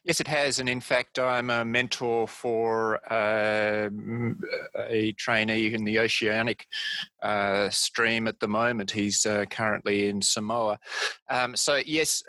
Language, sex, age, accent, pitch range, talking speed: English, male, 30-49, Australian, 110-135 Hz, 140 wpm